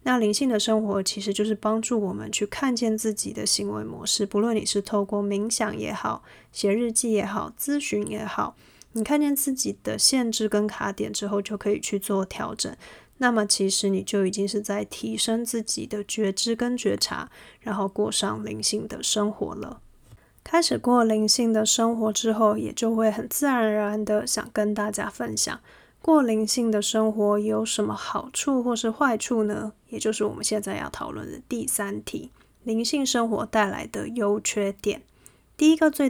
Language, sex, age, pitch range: Chinese, female, 20-39, 205-235 Hz